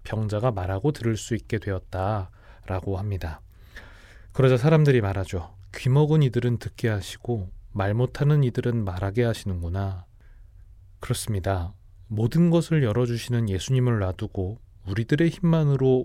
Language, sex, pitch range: Korean, male, 95-125 Hz